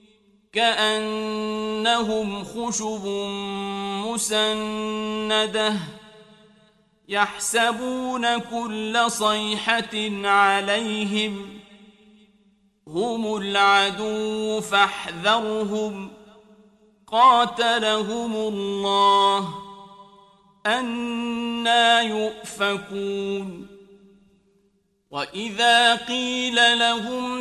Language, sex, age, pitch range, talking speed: Arabic, male, 40-59, 205-235 Hz, 35 wpm